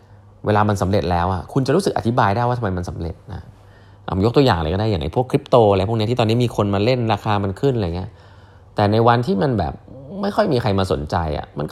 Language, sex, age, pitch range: Thai, male, 20-39, 95-110 Hz